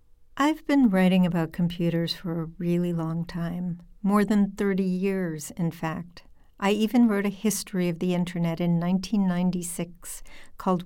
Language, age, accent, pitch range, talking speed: English, 60-79, American, 175-215 Hz, 150 wpm